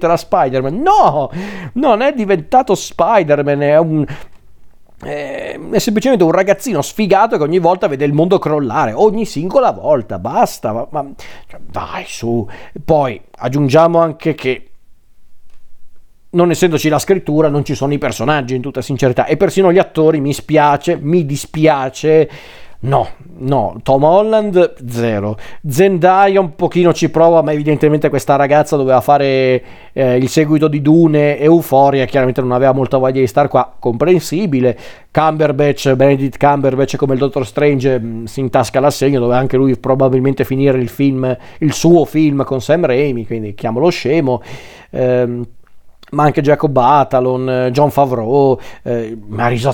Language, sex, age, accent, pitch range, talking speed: Italian, male, 40-59, native, 130-160 Hz, 145 wpm